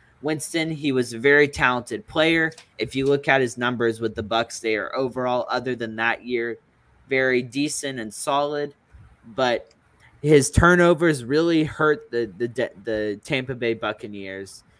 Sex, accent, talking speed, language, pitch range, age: male, American, 155 wpm, English, 115-145 Hz, 20-39